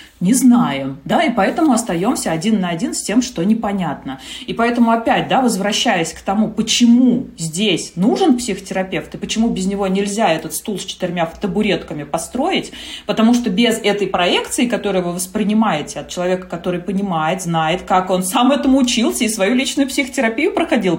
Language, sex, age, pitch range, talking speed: Russian, female, 30-49, 180-250 Hz, 165 wpm